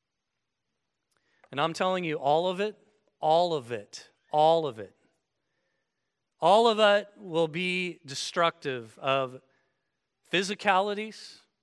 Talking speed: 110 wpm